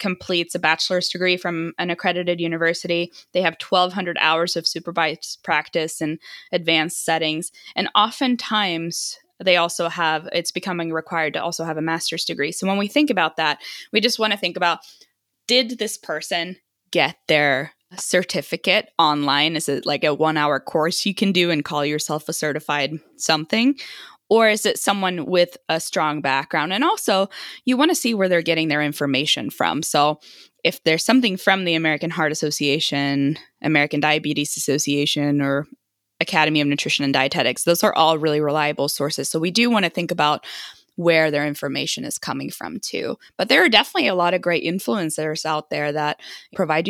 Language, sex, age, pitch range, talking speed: English, female, 20-39, 150-180 Hz, 175 wpm